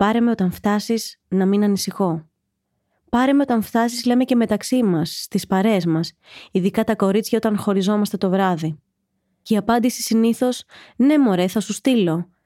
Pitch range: 175-215 Hz